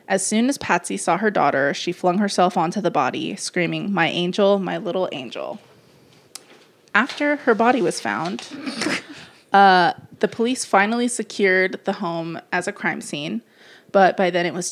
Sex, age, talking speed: female, 20-39, 165 wpm